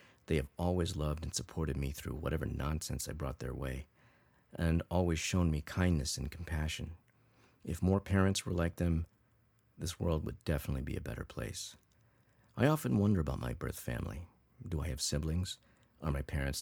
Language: English